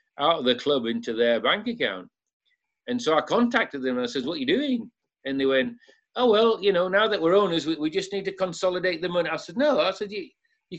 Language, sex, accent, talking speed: English, male, British, 255 wpm